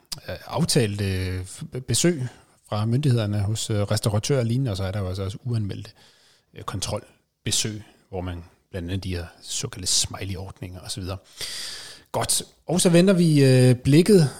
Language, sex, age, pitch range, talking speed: Danish, male, 30-49, 95-130 Hz, 135 wpm